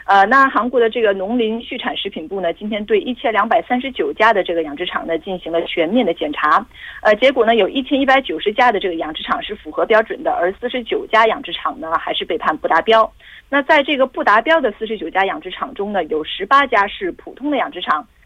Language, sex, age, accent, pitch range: Korean, female, 30-49, Chinese, 180-275 Hz